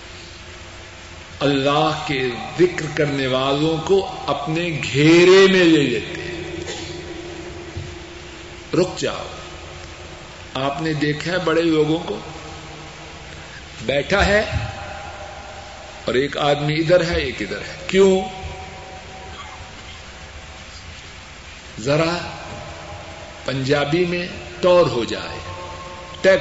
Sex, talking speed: male, 90 wpm